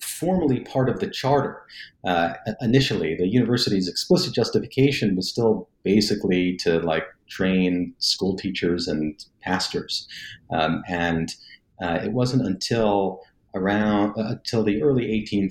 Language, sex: English, male